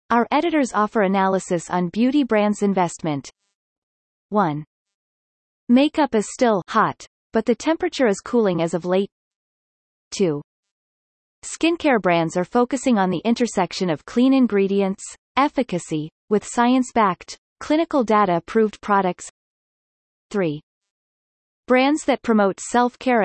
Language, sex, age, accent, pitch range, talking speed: English, female, 30-49, American, 180-245 Hz, 110 wpm